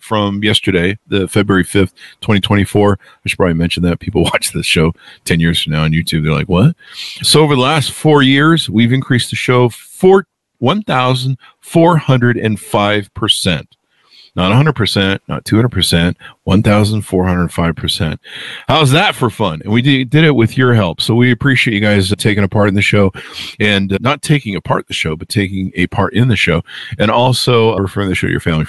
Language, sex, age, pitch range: English, male, 50-69, 95-125 Hz